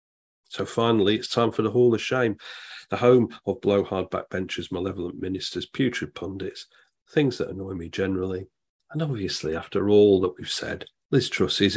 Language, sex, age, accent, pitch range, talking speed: English, male, 40-59, British, 95-135 Hz, 170 wpm